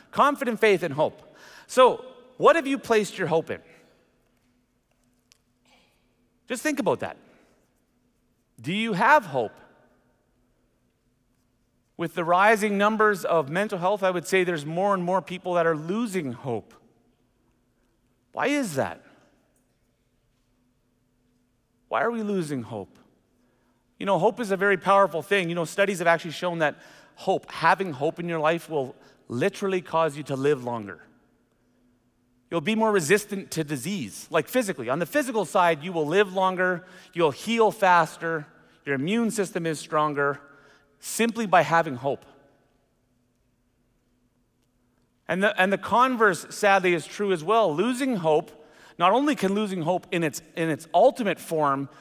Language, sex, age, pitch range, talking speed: English, male, 30-49, 125-195 Hz, 145 wpm